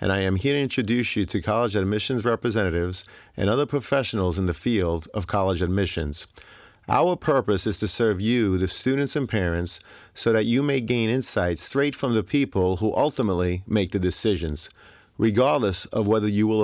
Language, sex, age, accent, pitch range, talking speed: English, male, 40-59, American, 95-120 Hz, 180 wpm